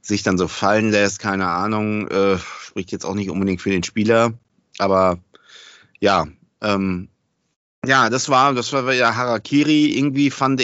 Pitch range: 95-110 Hz